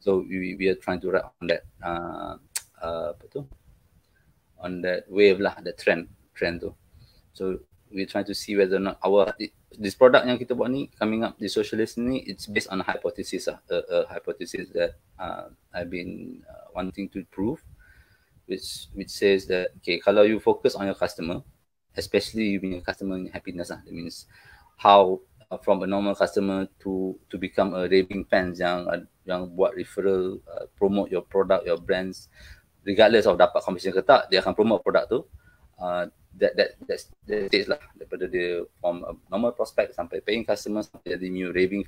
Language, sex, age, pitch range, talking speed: Malay, male, 20-39, 90-105 Hz, 190 wpm